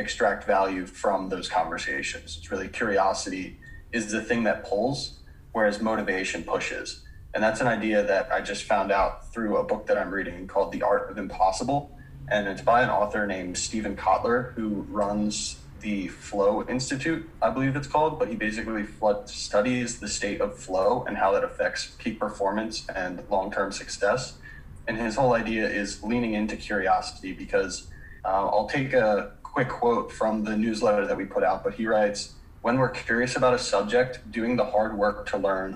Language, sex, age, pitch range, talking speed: English, male, 20-39, 100-125 Hz, 180 wpm